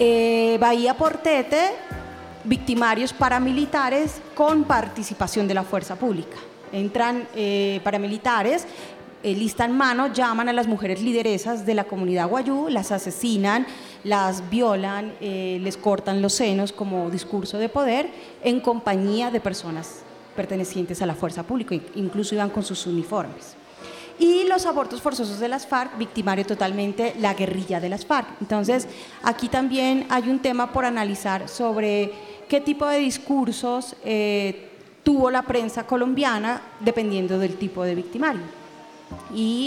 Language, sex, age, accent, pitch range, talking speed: Spanish, female, 30-49, Colombian, 200-255 Hz, 140 wpm